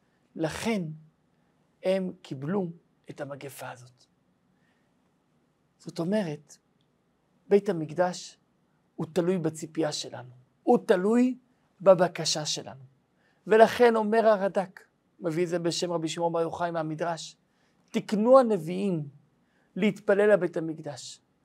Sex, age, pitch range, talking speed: male, 50-69, 155-205 Hz, 100 wpm